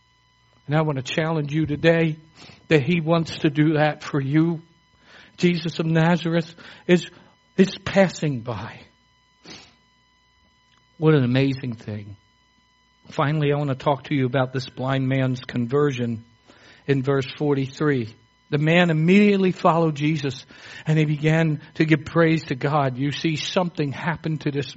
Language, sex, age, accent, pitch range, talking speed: English, male, 60-79, American, 130-170 Hz, 145 wpm